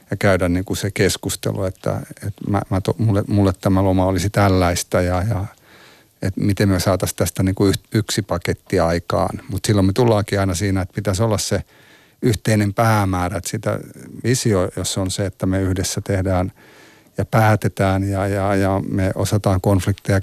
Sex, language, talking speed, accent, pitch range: male, Finnish, 150 wpm, native, 95-105 Hz